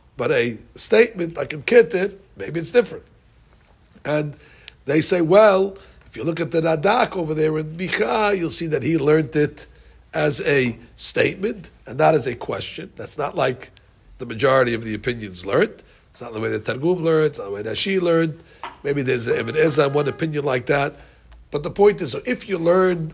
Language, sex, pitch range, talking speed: English, male, 125-170 Hz, 195 wpm